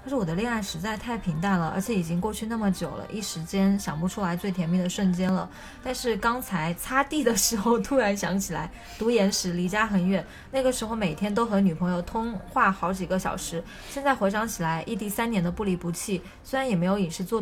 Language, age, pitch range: Chinese, 20-39, 180-235 Hz